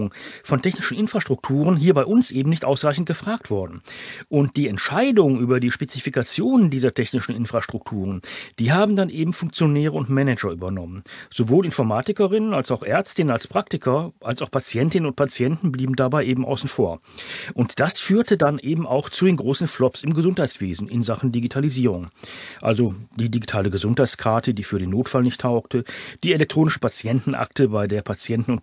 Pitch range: 115-155 Hz